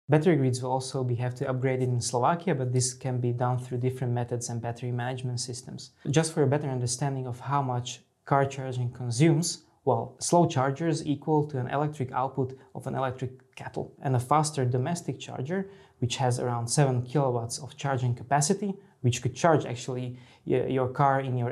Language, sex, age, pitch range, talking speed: Slovak, male, 20-39, 125-140 Hz, 185 wpm